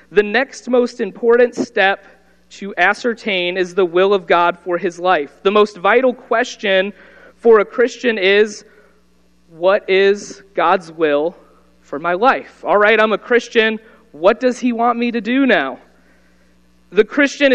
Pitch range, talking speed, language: 185-235 Hz, 155 wpm, English